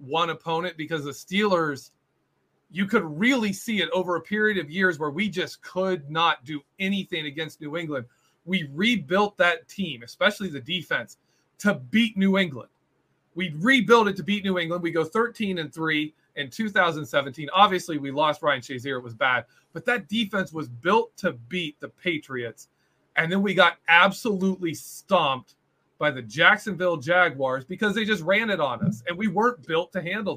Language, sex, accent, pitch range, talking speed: English, male, American, 145-200 Hz, 180 wpm